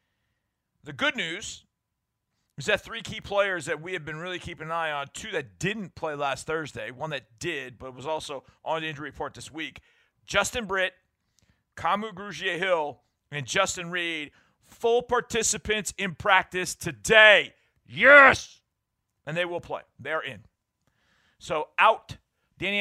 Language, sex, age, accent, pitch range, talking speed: English, male, 40-59, American, 140-185 Hz, 150 wpm